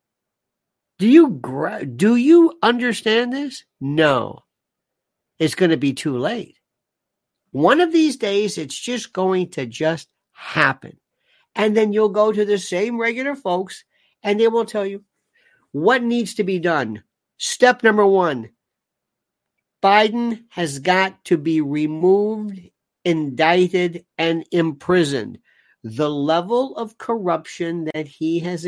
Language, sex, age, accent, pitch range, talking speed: English, male, 50-69, American, 160-240 Hz, 130 wpm